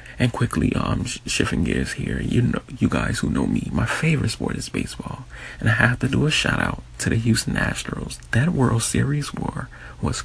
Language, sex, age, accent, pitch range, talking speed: English, male, 30-49, American, 110-130 Hz, 215 wpm